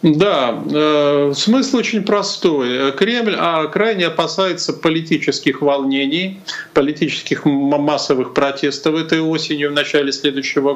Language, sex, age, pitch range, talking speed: Russian, male, 40-59, 140-200 Hz, 95 wpm